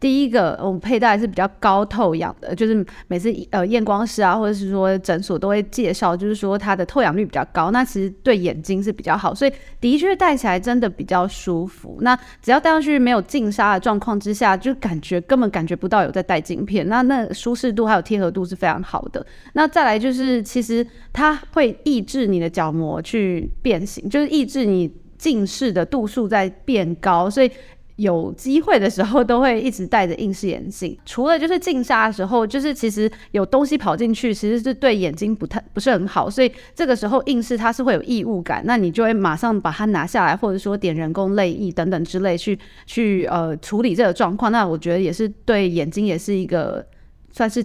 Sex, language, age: female, Chinese, 20-39